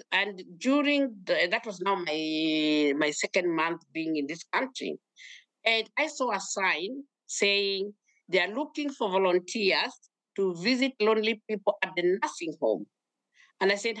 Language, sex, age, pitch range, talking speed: English, female, 50-69, 185-255 Hz, 150 wpm